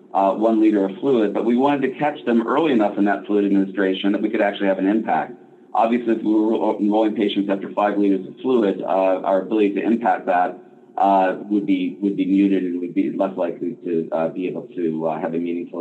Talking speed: 230 wpm